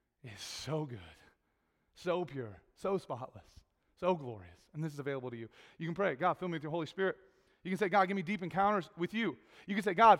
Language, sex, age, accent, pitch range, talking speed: English, male, 30-49, American, 125-205 Hz, 230 wpm